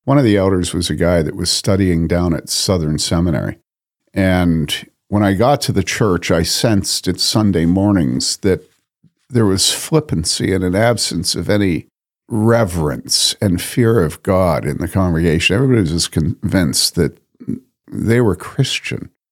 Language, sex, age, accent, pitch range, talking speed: English, male, 50-69, American, 90-115 Hz, 160 wpm